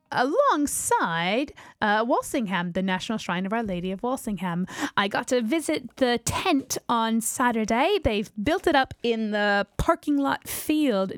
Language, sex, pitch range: English, female, 210-300 Hz